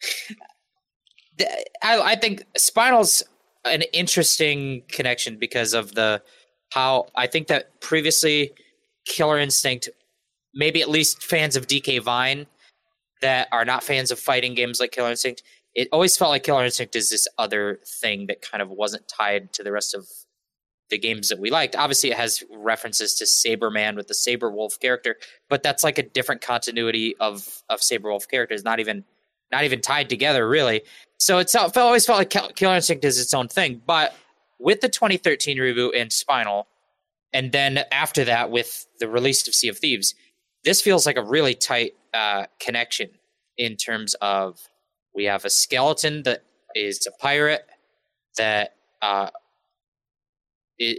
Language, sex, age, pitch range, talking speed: English, male, 20-39, 115-160 Hz, 160 wpm